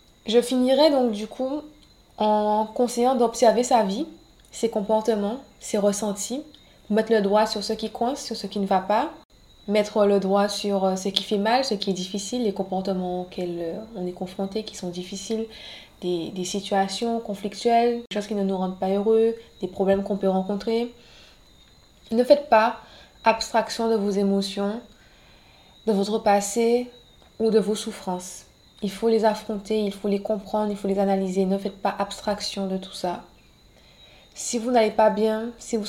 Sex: female